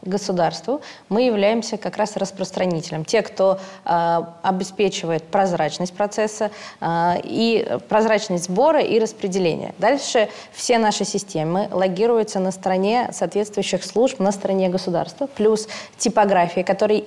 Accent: native